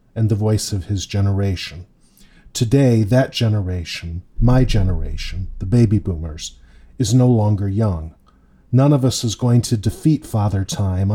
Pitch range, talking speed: 100-125 Hz, 145 wpm